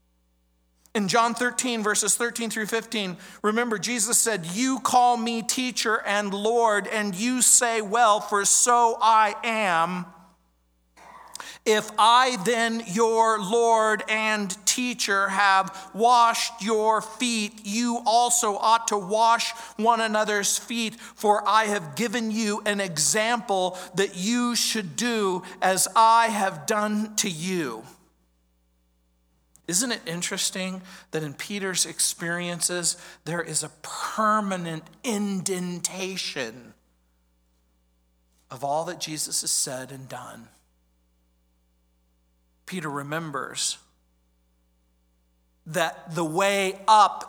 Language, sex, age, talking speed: English, male, 50-69, 110 wpm